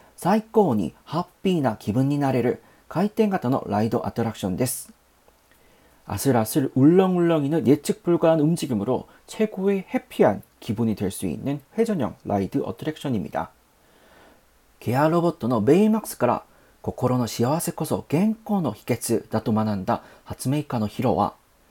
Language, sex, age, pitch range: Korean, male, 40-59, 120-185 Hz